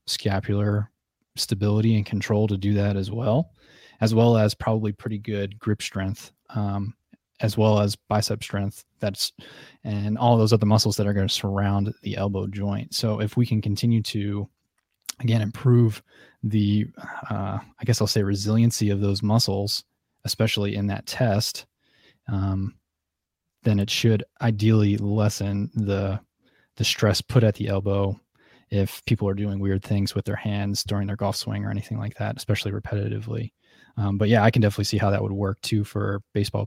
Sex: male